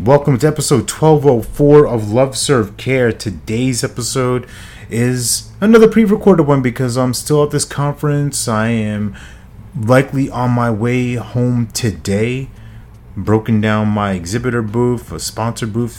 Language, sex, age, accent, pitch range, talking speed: English, male, 30-49, American, 100-120 Hz, 135 wpm